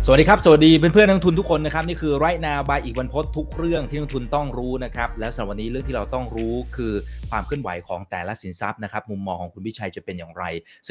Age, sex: 20-39, male